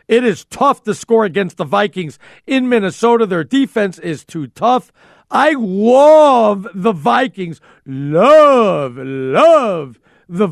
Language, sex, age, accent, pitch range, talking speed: English, male, 50-69, American, 180-235 Hz, 125 wpm